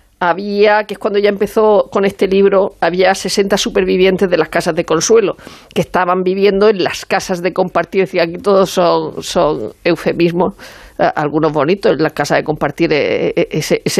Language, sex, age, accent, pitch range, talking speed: Spanish, female, 50-69, Spanish, 170-195 Hz, 170 wpm